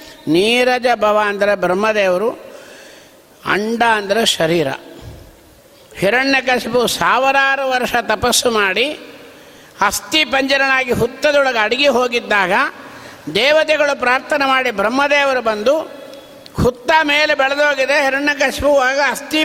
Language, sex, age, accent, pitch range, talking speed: Kannada, male, 60-79, native, 215-275 Hz, 95 wpm